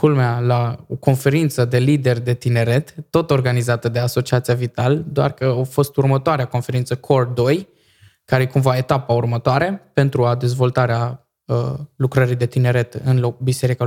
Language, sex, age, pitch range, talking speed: Romanian, male, 20-39, 125-165 Hz, 155 wpm